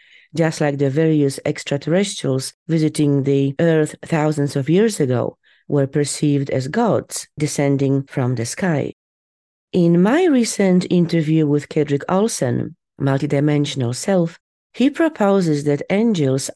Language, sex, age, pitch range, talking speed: English, female, 40-59, 140-180 Hz, 120 wpm